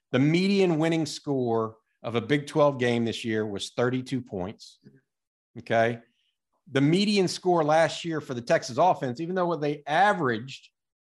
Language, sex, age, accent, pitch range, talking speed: English, male, 50-69, American, 125-165 Hz, 155 wpm